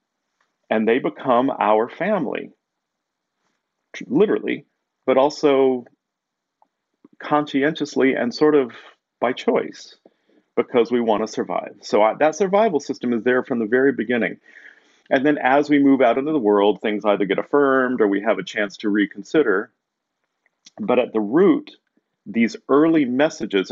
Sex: male